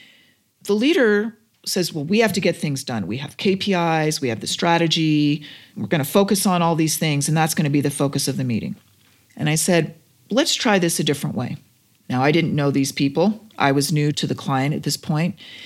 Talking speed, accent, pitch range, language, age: 225 wpm, American, 140-185 Hz, English, 40-59